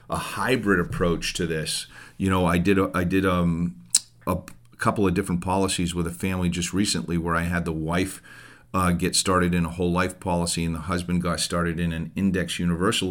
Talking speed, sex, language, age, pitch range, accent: 205 wpm, male, English, 40-59, 85-100 Hz, American